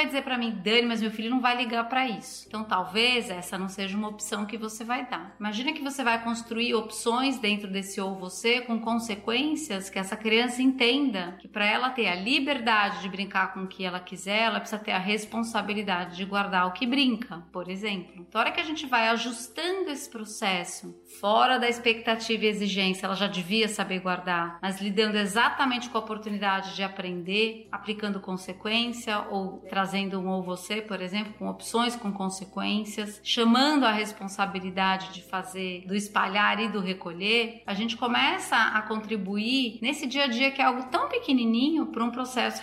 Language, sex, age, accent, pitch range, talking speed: Portuguese, female, 30-49, Brazilian, 195-235 Hz, 190 wpm